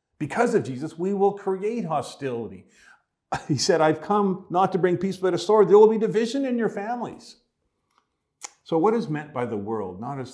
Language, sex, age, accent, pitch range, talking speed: English, male, 50-69, American, 120-165 Hz, 195 wpm